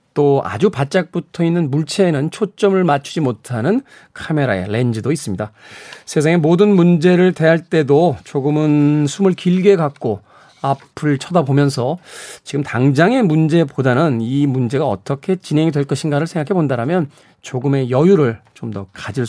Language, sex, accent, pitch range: Korean, male, native, 135-185 Hz